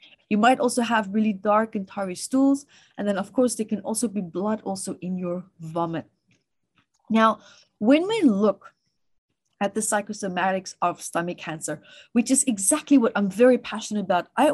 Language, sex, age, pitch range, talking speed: English, female, 30-49, 200-270 Hz, 170 wpm